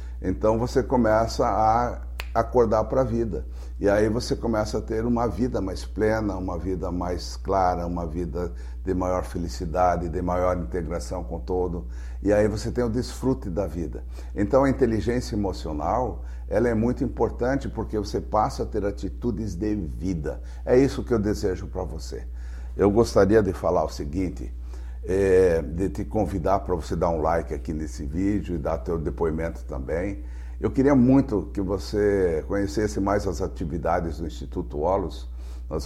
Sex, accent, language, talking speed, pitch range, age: male, Brazilian, Portuguese, 165 wpm, 80-105 Hz, 60-79